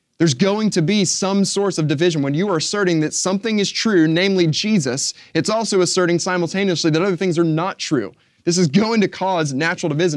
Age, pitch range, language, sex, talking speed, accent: 20-39, 125-170 Hz, English, male, 205 wpm, American